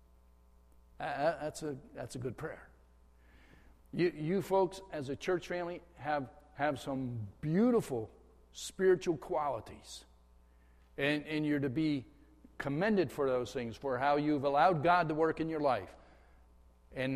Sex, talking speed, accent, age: male, 140 wpm, American, 50-69